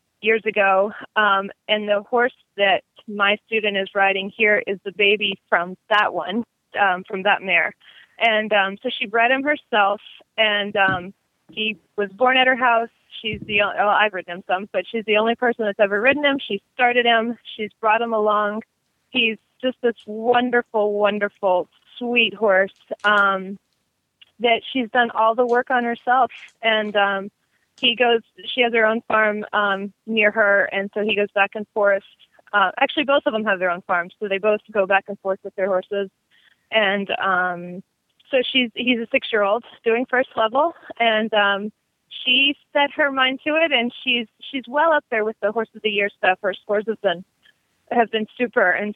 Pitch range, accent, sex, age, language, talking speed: 200-240 Hz, American, female, 20-39, English, 190 wpm